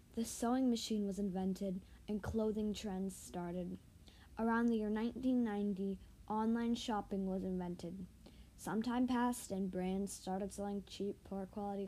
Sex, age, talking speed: female, 20-39, 135 wpm